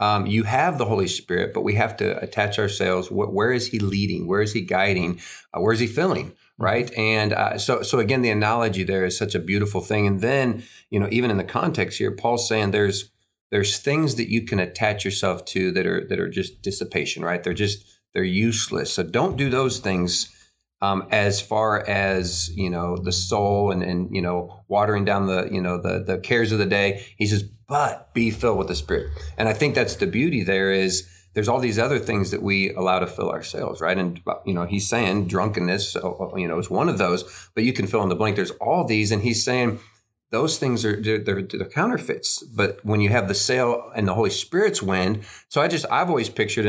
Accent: American